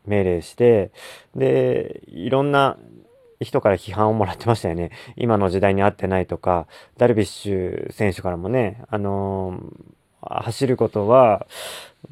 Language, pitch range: Japanese, 100-125 Hz